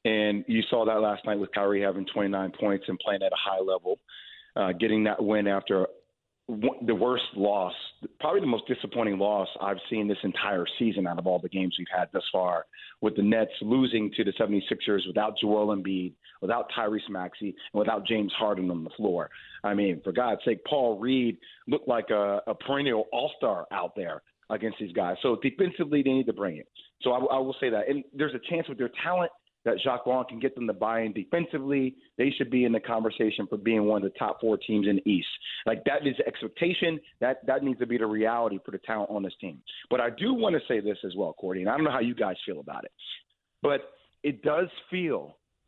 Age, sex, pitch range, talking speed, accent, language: 40-59, male, 100-135 Hz, 225 wpm, American, English